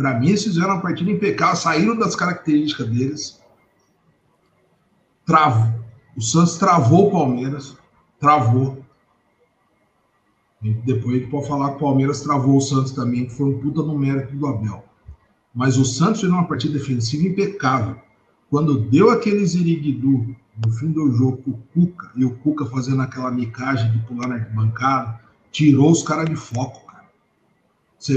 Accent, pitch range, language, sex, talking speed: Brazilian, 130-180 Hz, Portuguese, male, 155 wpm